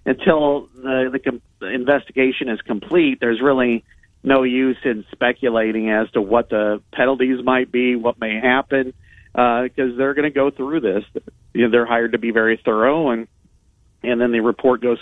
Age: 40-59